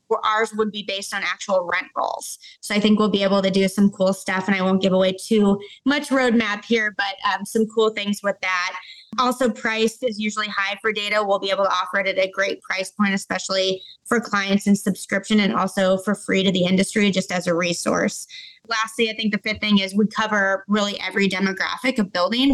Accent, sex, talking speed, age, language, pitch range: American, female, 220 wpm, 20-39, English, 195-220 Hz